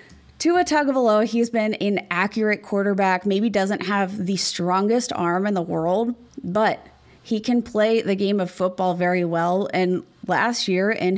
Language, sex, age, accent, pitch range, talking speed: English, female, 20-39, American, 185-220 Hz, 180 wpm